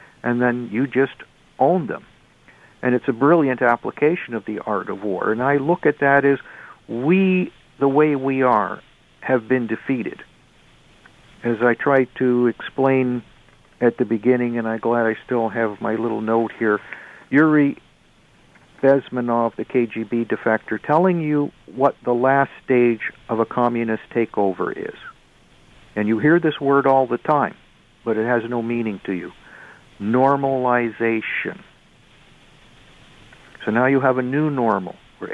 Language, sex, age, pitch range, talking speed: English, male, 50-69, 115-140 Hz, 150 wpm